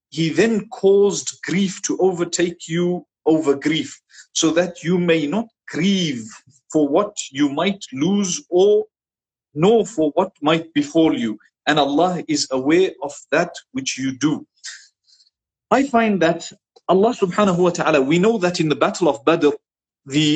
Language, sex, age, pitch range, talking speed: English, male, 50-69, 150-200 Hz, 155 wpm